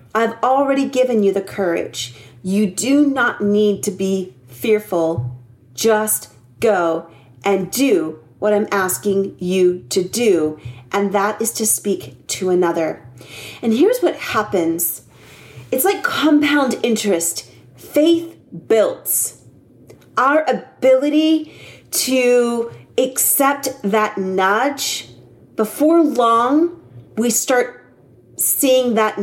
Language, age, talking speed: English, 40-59, 105 wpm